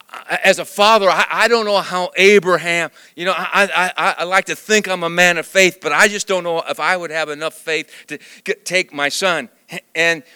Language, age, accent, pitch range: English, 40-59, American, 145-215 Hz